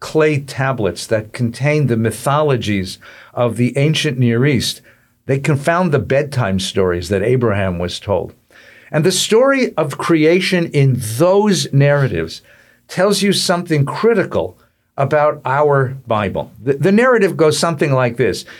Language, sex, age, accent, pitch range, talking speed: English, male, 50-69, American, 120-155 Hz, 135 wpm